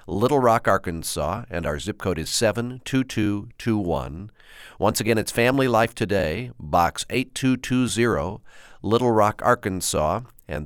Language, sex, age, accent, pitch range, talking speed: English, male, 50-69, American, 90-115 Hz, 120 wpm